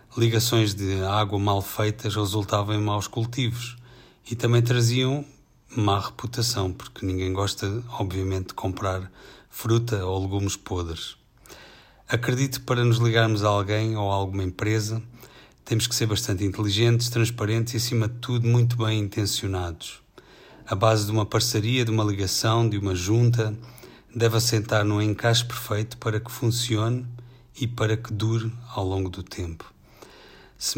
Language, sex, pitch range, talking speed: Portuguese, male, 100-120 Hz, 150 wpm